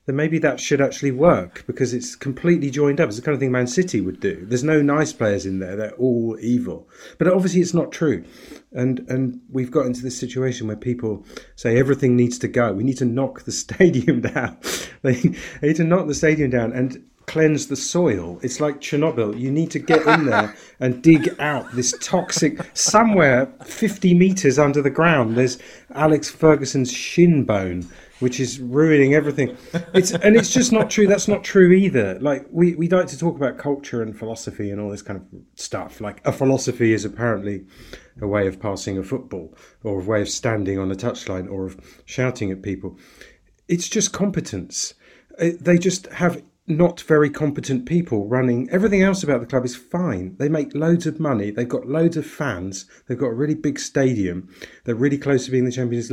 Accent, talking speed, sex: British, 200 wpm, male